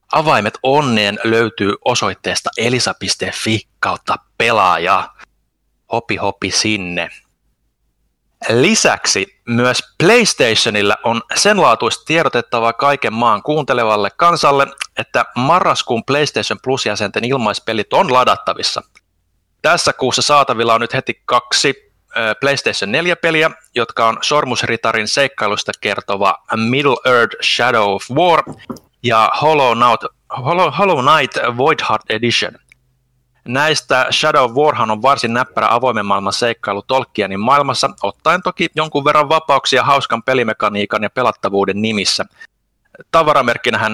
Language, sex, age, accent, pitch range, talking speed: Finnish, male, 30-49, native, 105-140 Hz, 100 wpm